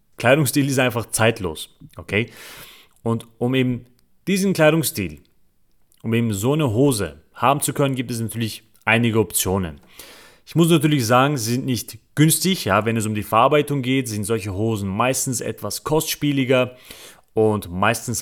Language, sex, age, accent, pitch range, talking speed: German, male, 30-49, German, 100-130 Hz, 145 wpm